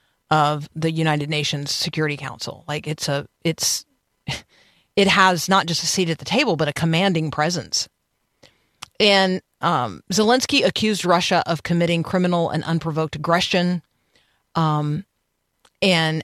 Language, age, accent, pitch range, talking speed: English, 40-59, American, 155-185 Hz, 135 wpm